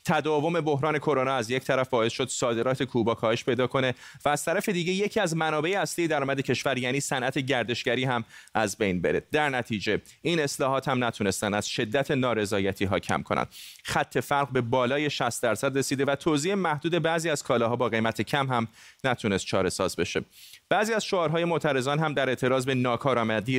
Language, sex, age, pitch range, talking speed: Persian, male, 30-49, 115-145 Hz, 185 wpm